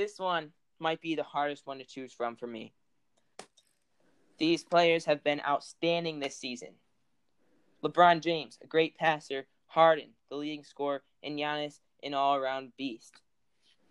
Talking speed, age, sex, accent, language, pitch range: 140 wpm, 10-29, male, American, English, 140-165 Hz